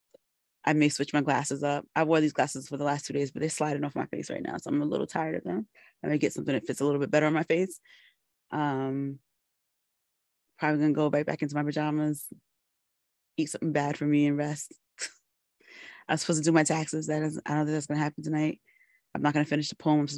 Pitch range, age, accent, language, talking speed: 135-160 Hz, 20-39, American, English, 240 wpm